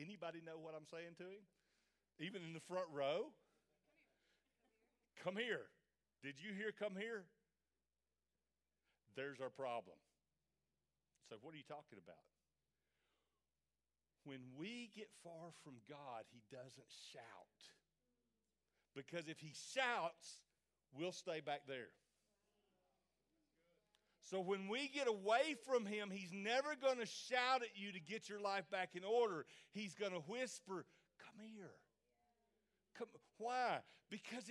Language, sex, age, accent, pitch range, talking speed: English, male, 50-69, American, 165-235 Hz, 130 wpm